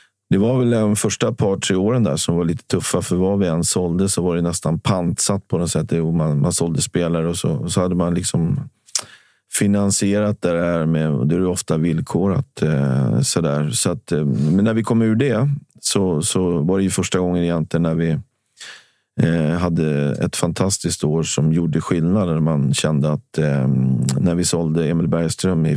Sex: male